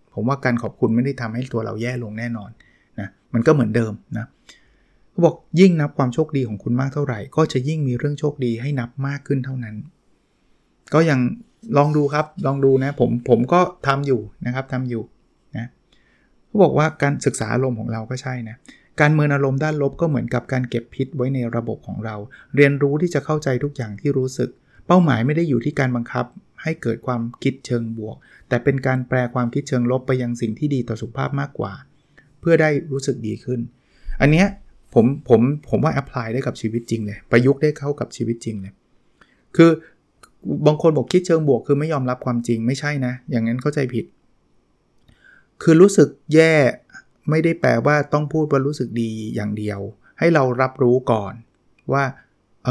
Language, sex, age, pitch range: Thai, male, 20-39, 120-145 Hz